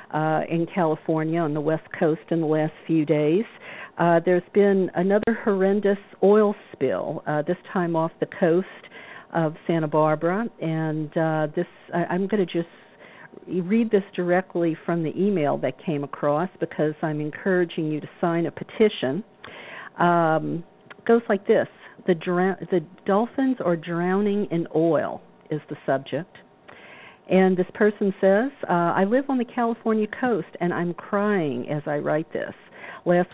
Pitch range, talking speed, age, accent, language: 155-195 Hz, 160 wpm, 50-69, American, English